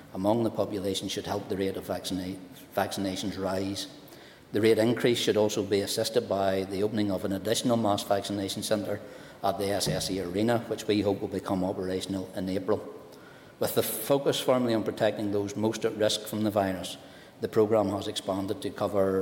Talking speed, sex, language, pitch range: 180 wpm, male, English, 95-105 Hz